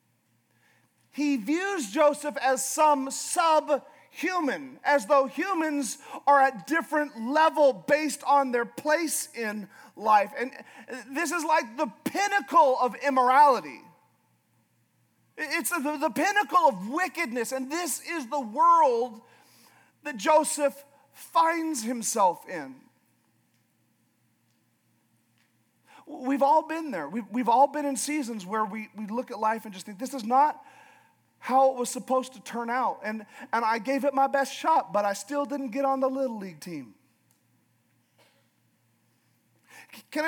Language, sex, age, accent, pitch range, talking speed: English, male, 40-59, American, 215-295 Hz, 130 wpm